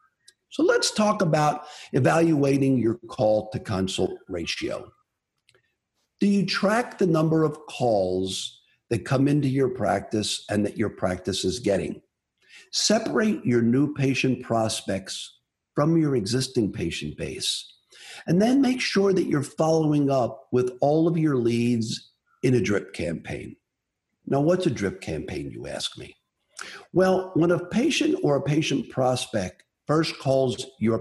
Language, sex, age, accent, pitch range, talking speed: English, male, 50-69, American, 120-170 Hz, 140 wpm